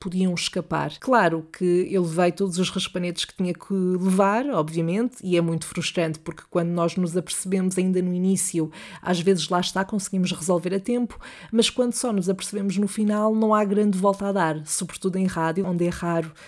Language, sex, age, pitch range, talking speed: Portuguese, female, 20-39, 175-215 Hz, 195 wpm